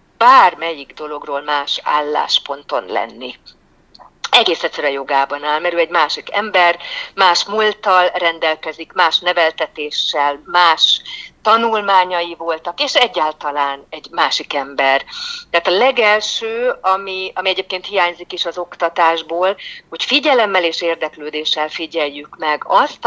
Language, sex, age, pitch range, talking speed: Hungarian, female, 50-69, 150-190 Hz, 115 wpm